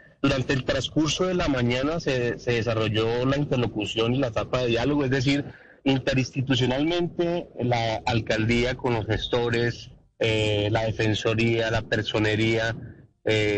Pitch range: 110-130 Hz